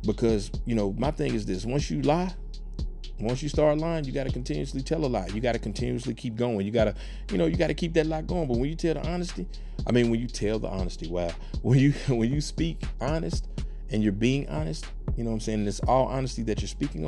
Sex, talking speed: male, 265 wpm